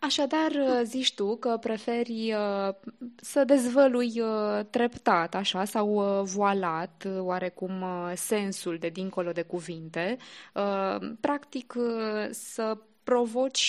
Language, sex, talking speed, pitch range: Romanian, female, 90 wpm, 185-240 Hz